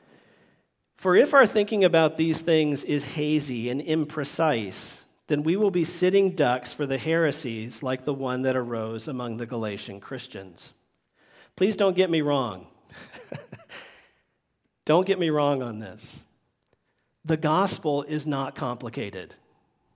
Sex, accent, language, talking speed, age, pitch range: male, American, English, 135 wpm, 40-59, 135-165 Hz